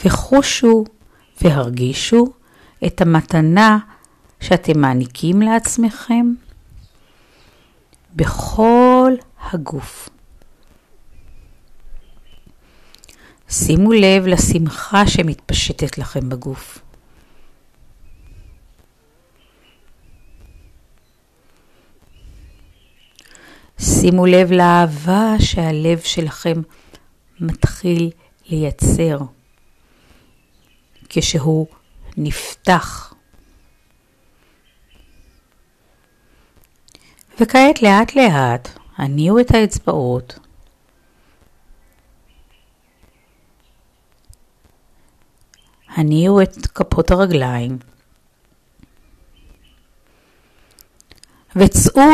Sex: female